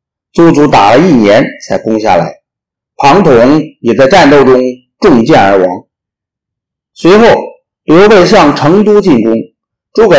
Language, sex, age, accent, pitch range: Chinese, male, 50-69, native, 115-170 Hz